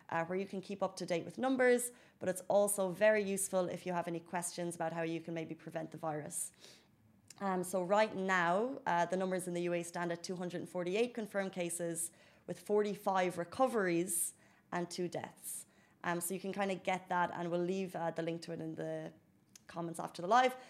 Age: 20-39